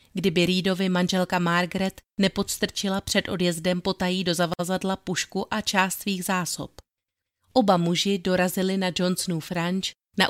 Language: Czech